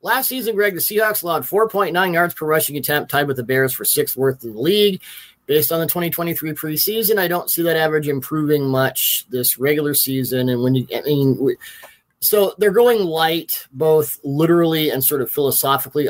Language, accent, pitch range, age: English, American, 130-165 Hz, 30-49